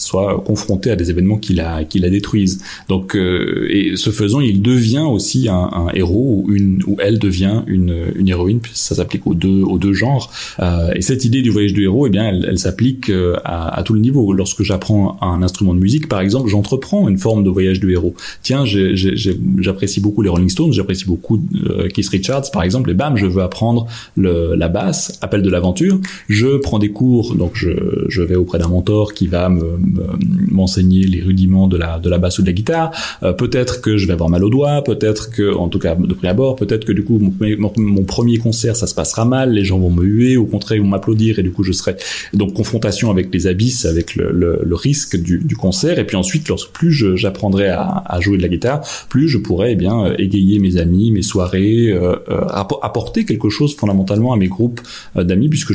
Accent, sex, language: French, male, French